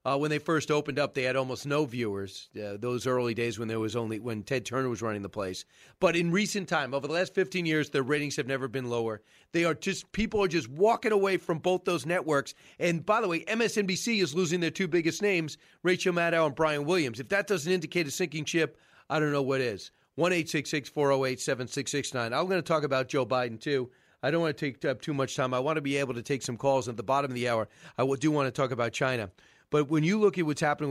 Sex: male